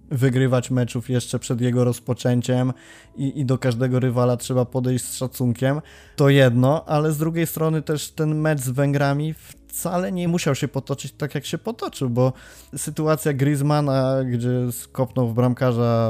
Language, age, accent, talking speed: Polish, 20-39, native, 155 wpm